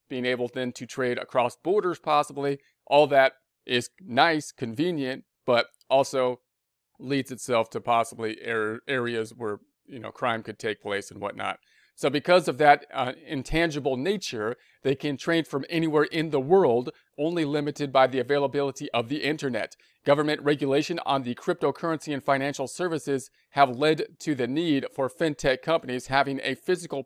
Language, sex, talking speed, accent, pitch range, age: English, male, 155 wpm, American, 125-145 Hz, 40-59